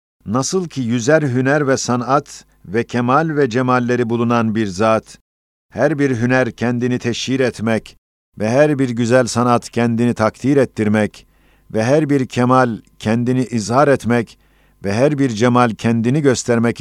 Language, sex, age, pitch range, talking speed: Turkish, male, 50-69, 105-130 Hz, 145 wpm